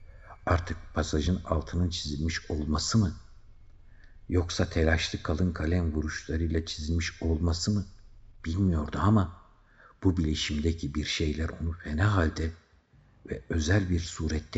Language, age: Turkish, 60-79